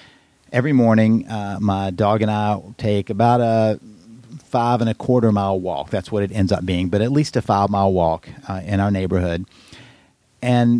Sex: male